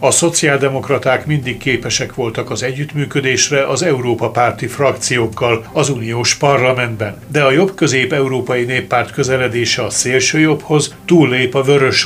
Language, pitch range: Hungarian, 120-140 Hz